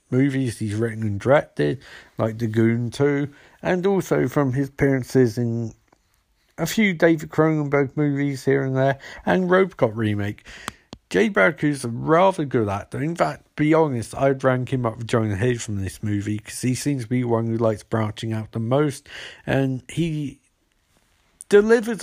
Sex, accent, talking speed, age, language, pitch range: male, British, 170 wpm, 50-69, English, 110-140 Hz